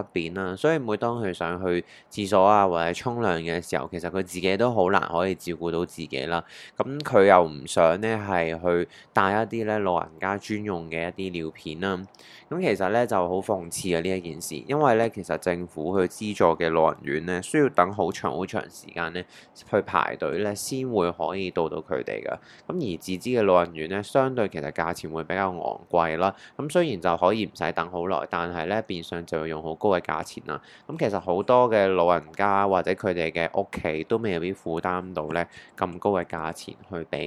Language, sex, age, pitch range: Chinese, male, 20-39, 85-100 Hz